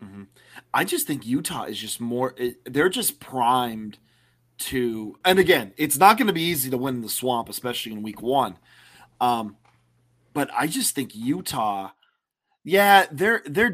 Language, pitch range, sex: English, 105-135 Hz, male